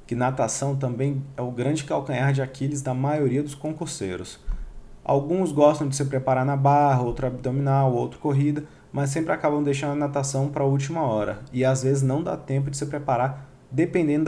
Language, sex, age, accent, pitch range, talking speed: Portuguese, male, 20-39, Brazilian, 125-145 Hz, 185 wpm